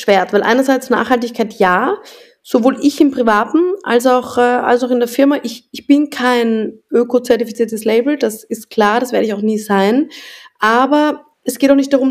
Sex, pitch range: female, 220-255 Hz